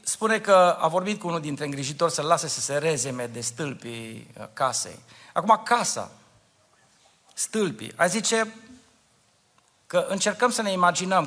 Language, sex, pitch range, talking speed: Romanian, male, 135-215 Hz, 140 wpm